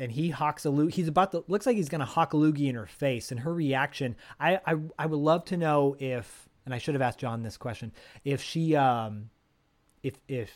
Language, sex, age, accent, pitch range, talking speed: English, male, 30-49, American, 120-145 Hz, 245 wpm